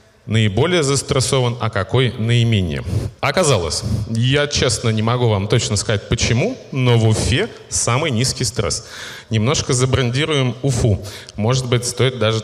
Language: Russian